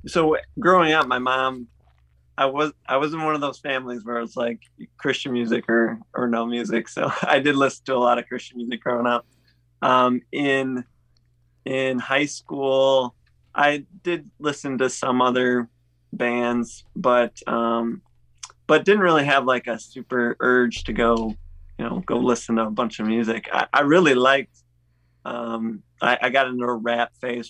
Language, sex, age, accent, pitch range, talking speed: English, male, 20-39, American, 115-130 Hz, 175 wpm